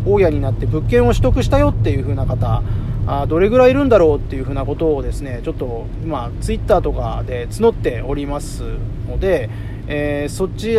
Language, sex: Japanese, male